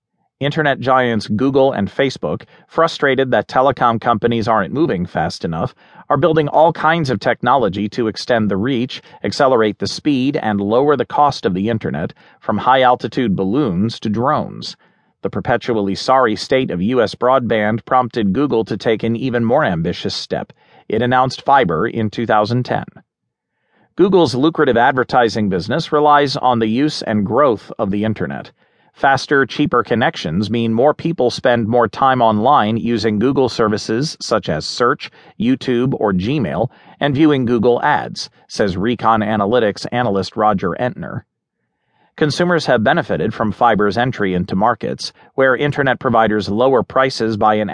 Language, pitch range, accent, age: English, 110-135 Hz, American, 40-59